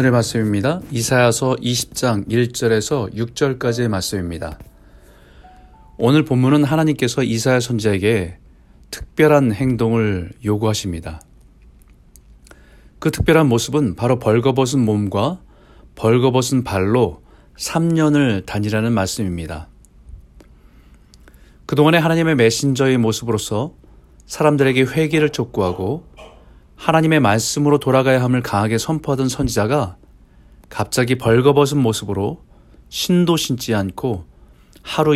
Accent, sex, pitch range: native, male, 95-140 Hz